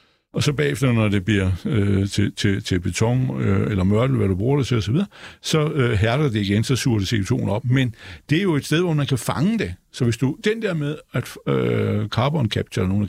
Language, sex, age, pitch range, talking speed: Danish, male, 60-79, 105-145 Hz, 250 wpm